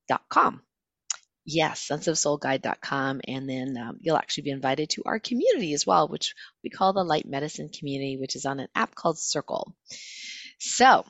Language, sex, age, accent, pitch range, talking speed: English, female, 30-49, American, 150-210 Hz, 170 wpm